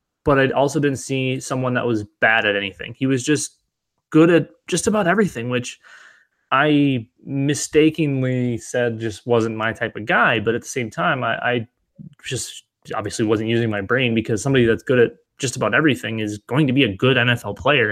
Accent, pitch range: American, 110-130 Hz